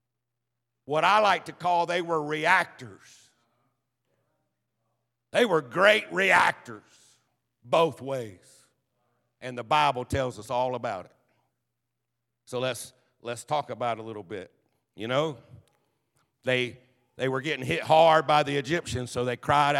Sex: male